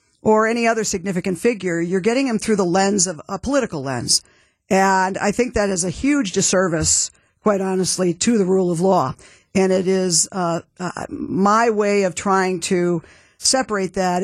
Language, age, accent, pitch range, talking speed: English, 50-69, American, 185-220 Hz, 175 wpm